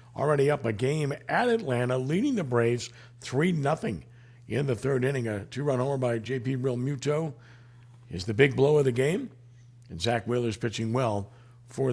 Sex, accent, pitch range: male, American, 115-130 Hz